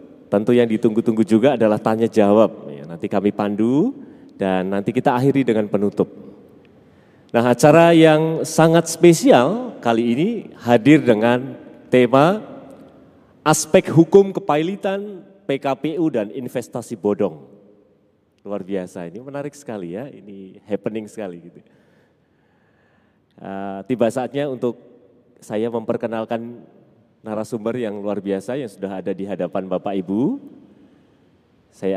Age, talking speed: 30-49, 110 wpm